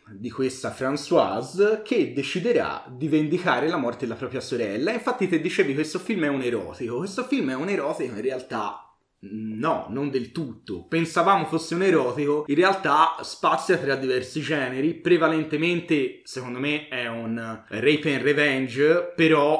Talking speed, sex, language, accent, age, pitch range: 155 wpm, male, Italian, native, 30-49, 130-170 Hz